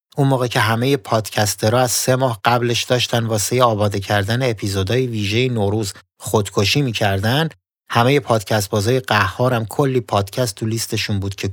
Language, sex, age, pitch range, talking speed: Persian, male, 30-49, 105-135 Hz, 145 wpm